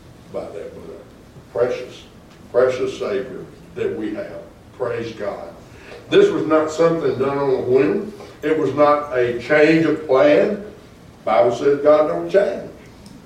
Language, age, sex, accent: English, 60-79, male, American